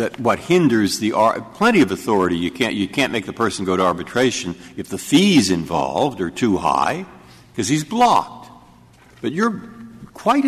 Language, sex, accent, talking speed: English, male, American, 180 wpm